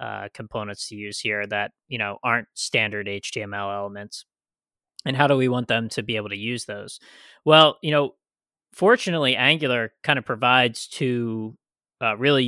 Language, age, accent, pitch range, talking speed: English, 20-39, American, 110-140 Hz, 170 wpm